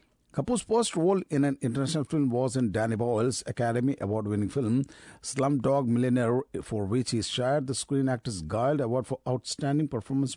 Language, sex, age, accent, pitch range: Japanese, male, 50-69, Indian, 115-150 Hz